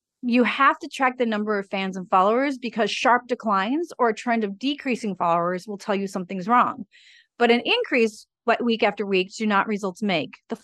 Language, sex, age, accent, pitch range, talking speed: English, female, 30-49, American, 205-245 Hz, 205 wpm